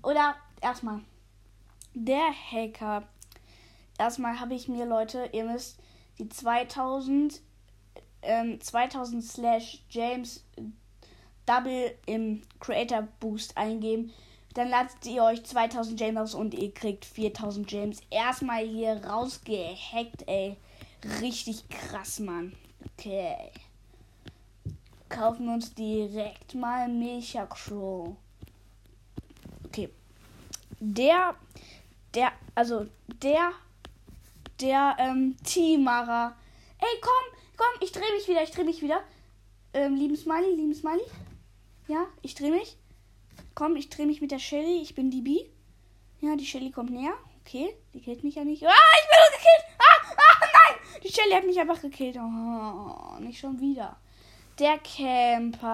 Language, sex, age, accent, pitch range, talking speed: German, female, 10-29, German, 215-295 Hz, 125 wpm